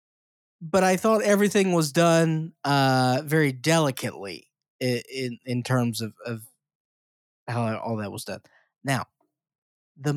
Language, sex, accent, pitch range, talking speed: English, male, American, 120-155 Hz, 130 wpm